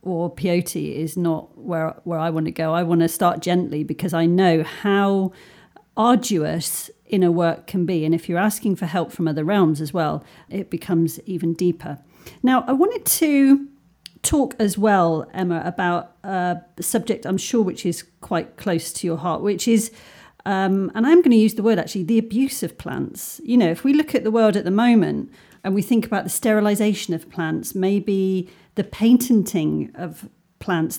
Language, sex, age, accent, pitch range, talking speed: English, female, 40-59, British, 175-225 Hz, 190 wpm